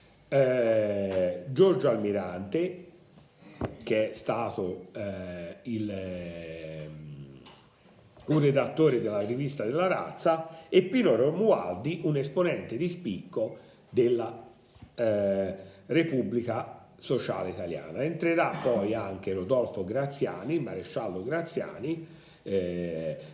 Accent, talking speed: native, 85 wpm